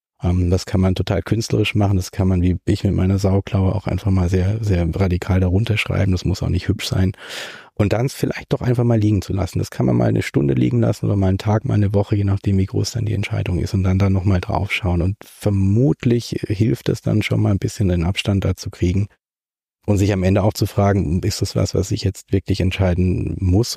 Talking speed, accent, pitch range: 240 wpm, German, 95-110 Hz